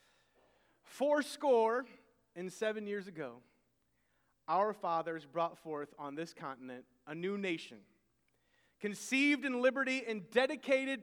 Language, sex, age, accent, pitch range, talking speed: English, male, 30-49, American, 180-240 Hz, 115 wpm